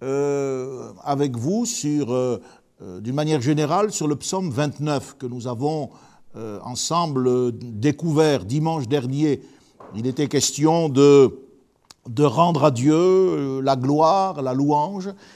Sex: male